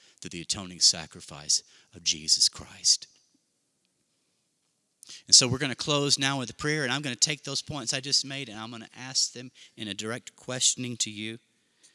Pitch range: 100-130 Hz